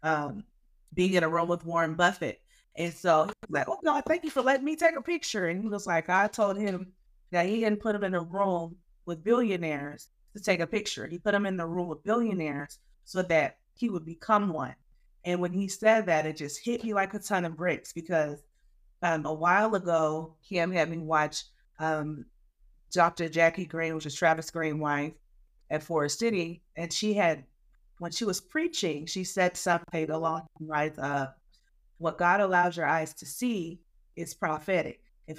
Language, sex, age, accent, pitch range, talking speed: English, female, 30-49, American, 160-210 Hz, 195 wpm